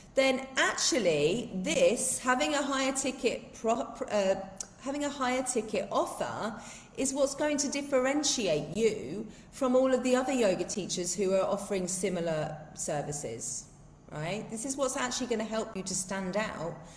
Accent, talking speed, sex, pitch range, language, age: British, 155 wpm, female, 180-240 Hz, English, 30-49